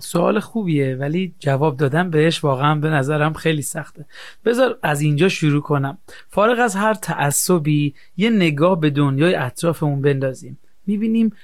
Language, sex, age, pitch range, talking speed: Persian, male, 40-59, 150-190 Hz, 140 wpm